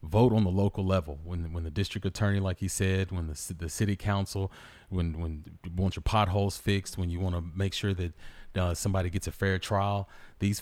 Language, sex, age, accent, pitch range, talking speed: English, male, 30-49, American, 90-105 Hz, 220 wpm